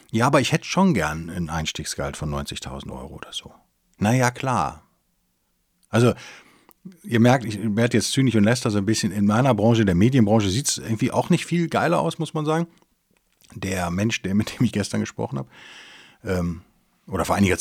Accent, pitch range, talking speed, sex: German, 90-125 Hz, 190 wpm, male